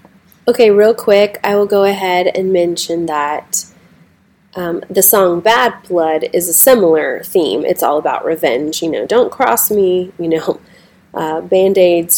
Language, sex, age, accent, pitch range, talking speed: English, female, 20-39, American, 175-210 Hz, 160 wpm